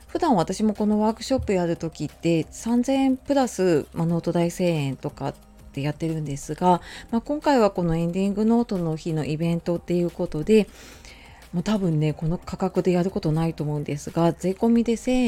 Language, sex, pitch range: Japanese, female, 160-225 Hz